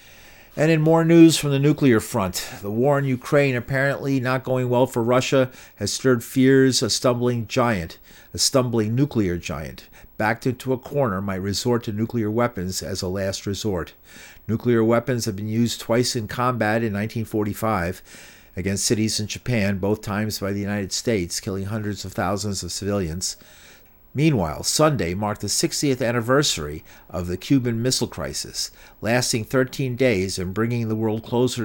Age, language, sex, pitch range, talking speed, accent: 50-69, English, male, 100-125 Hz, 165 wpm, American